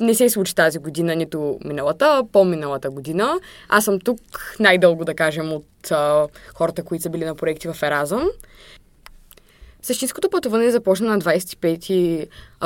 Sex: female